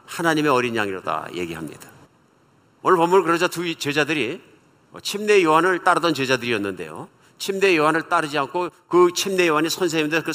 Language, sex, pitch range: Korean, male, 125-170 Hz